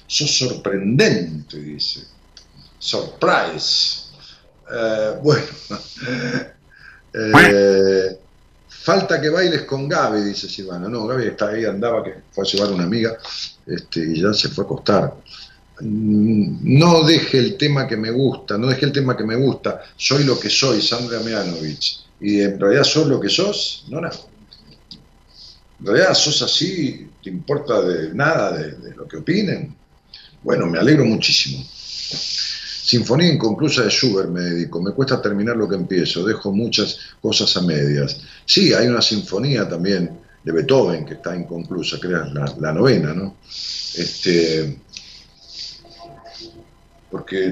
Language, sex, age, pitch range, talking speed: Spanish, male, 50-69, 90-125 Hz, 140 wpm